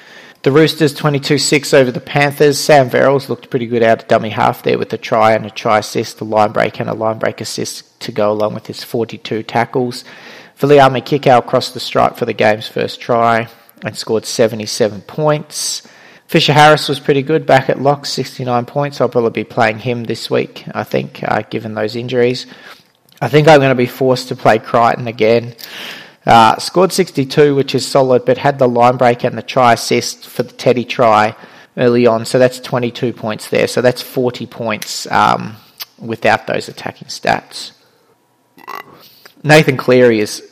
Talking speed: 180 wpm